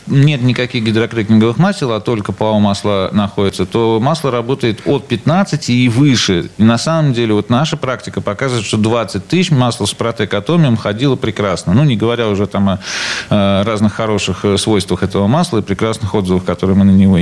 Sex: male